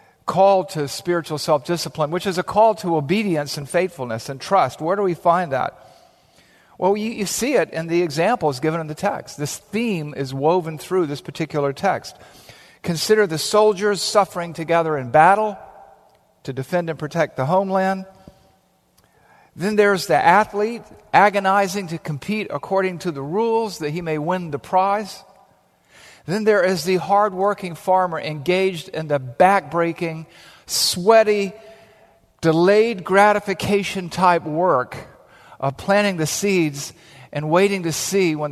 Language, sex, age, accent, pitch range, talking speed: English, male, 50-69, American, 150-195 Hz, 150 wpm